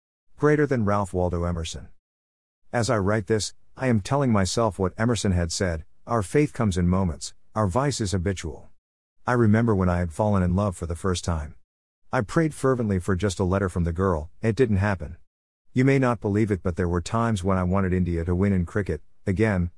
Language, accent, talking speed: English, American, 210 wpm